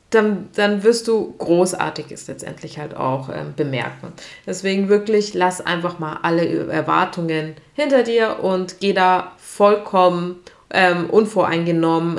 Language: German